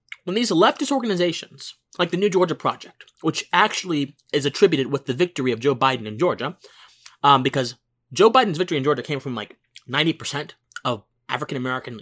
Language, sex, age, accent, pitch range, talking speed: English, male, 20-39, American, 130-190 Hz, 170 wpm